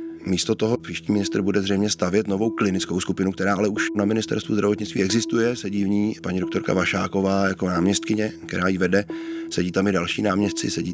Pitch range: 90-110 Hz